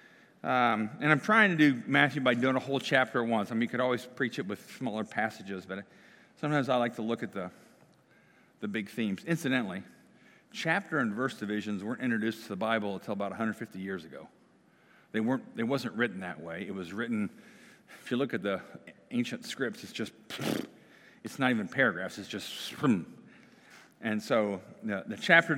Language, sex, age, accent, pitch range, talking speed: English, male, 40-59, American, 105-140 Hz, 185 wpm